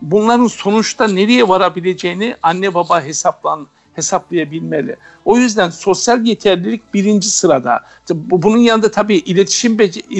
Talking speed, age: 110 wpm, 60-79